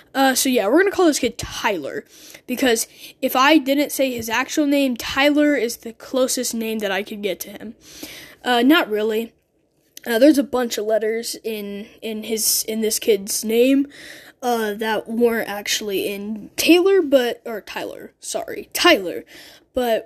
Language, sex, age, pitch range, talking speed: English, female, 10-29, 225-300 Hz, 170 wpm